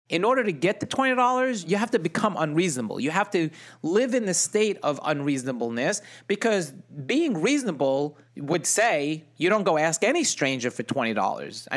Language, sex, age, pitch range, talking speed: English, male, 30-49, 145-190 Hz, 170 wpm